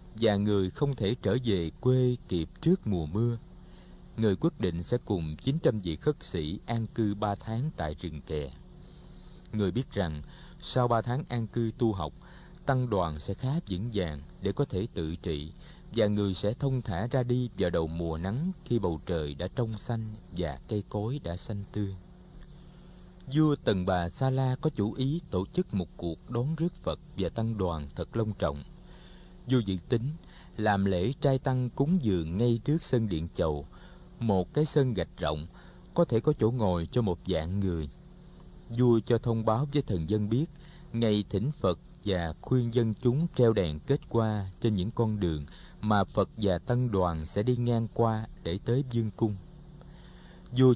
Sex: male